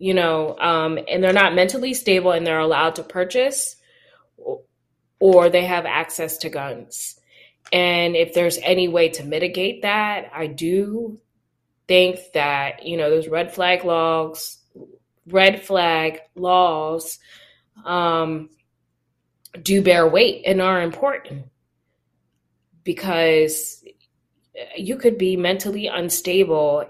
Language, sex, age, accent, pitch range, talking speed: English, female, 20-39, American, 155-190 Hz, 120 wpm